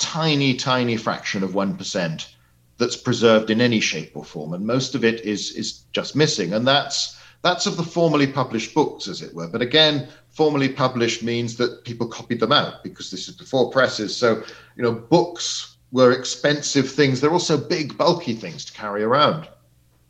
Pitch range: 115-150 Hz